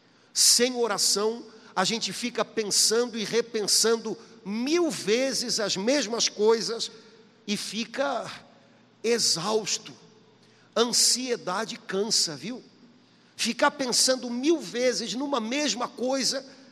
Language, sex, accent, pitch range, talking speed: Portuguese, male, Brazilian, 185-240 Hz, 95 wpm